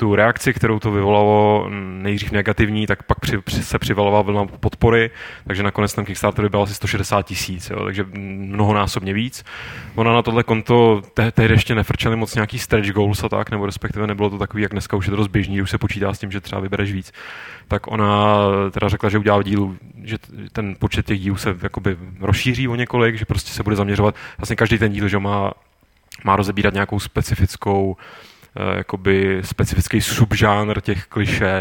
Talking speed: 180 wpm